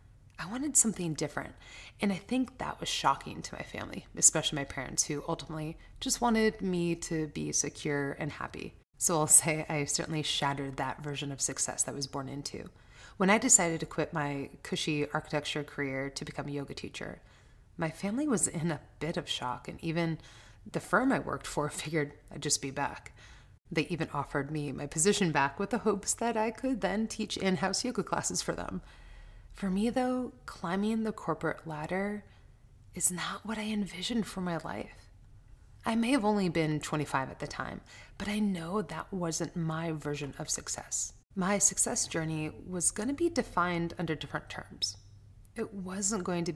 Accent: American